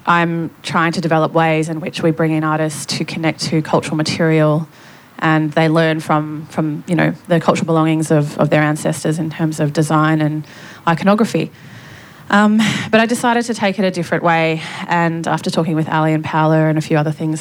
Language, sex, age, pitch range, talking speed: English, female, 20-39, 155-170 Hz, 200 wpm